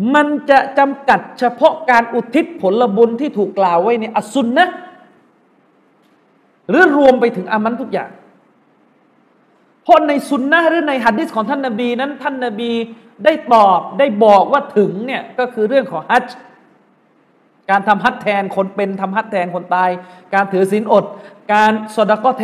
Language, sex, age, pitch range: Thai, male, 30-49, 210-275 Hz